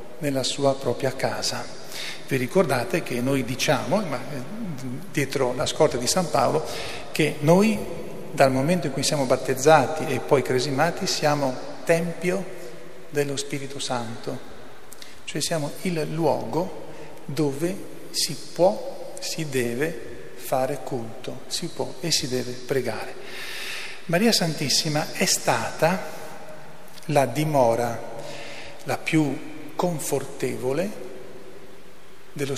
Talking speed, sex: 110 wpm, male